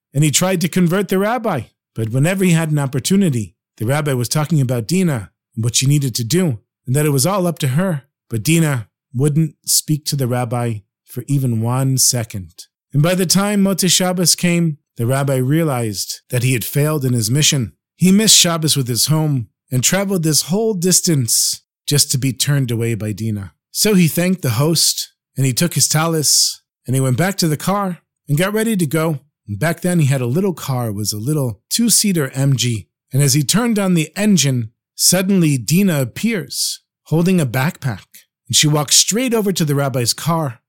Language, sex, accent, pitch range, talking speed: English, male, American, 125-175 Hz, 200 wpm